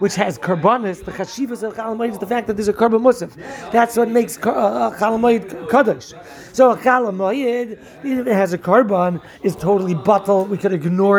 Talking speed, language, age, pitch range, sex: 205 wpm, English, 30-49, 195-245 Hz, male